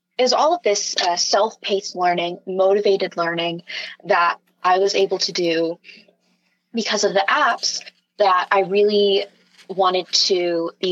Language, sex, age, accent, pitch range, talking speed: English, female, 20-39, American, 170-195 Hz, 135 wpm